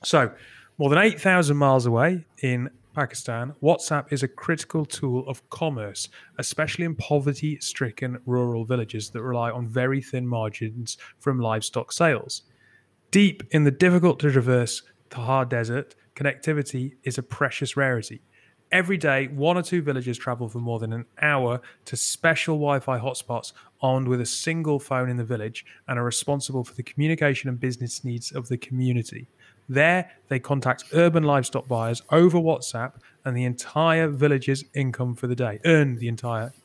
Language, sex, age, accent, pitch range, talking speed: English, male, 30-49, British, 120-145 Hz, 160 wpm